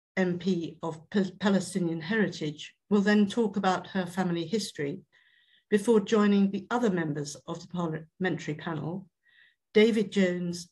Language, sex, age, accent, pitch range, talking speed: English, female, 60-79, British, 165-200 Hz, 125 wpm